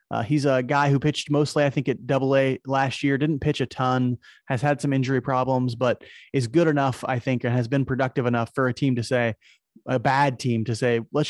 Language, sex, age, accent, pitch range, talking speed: English, male, 30-49, American, 120-140 Hz, 240 wpm